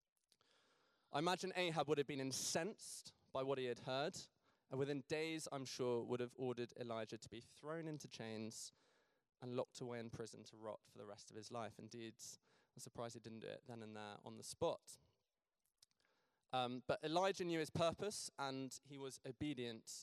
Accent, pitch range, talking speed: British, 120-145 Hz, 185 wpm